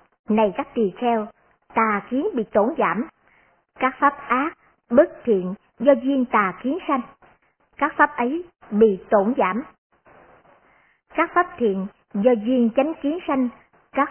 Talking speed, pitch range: 145 wpm, 220-290 Hz